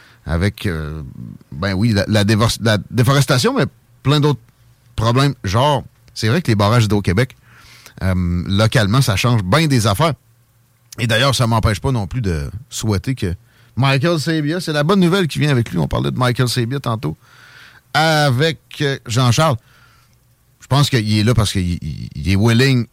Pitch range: 105-130 Hz